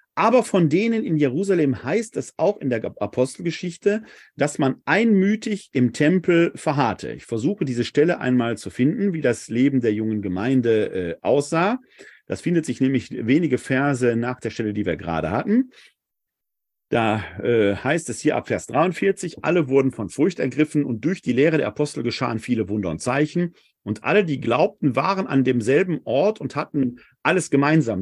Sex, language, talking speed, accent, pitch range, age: male, German, 170 wpm, German, 125-195 Hz, 40-59